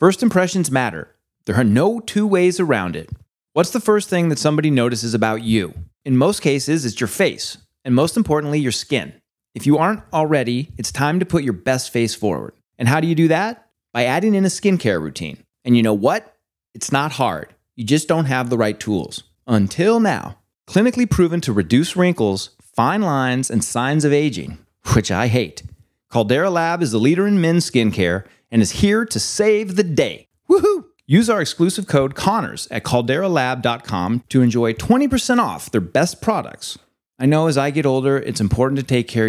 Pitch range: 110-160 Hz